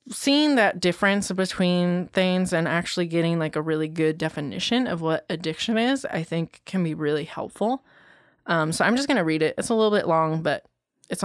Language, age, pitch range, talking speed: English, 20-39, 170-210 Hz, 205 wpm